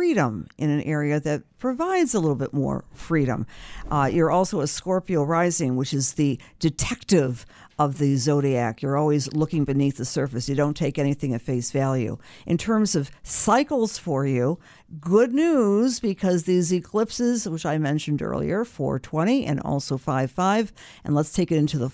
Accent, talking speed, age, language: American, 170 wpm, 50-69, English